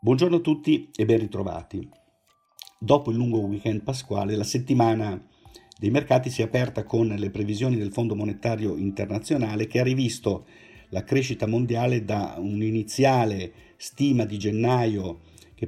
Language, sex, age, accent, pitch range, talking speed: Italian, male, 50-69, native, 105-125 Hz, 145 wpm